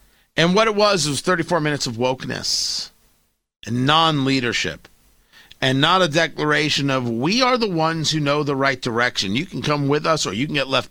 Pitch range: 130-185 Hz